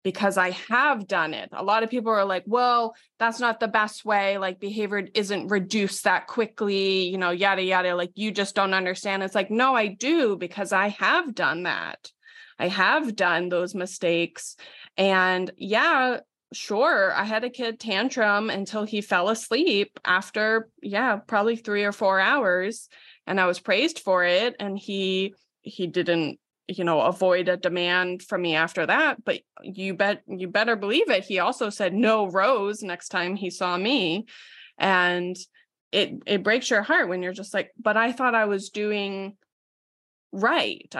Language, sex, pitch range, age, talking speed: English, female, 185-215 Hz, 20-39, 175 wpm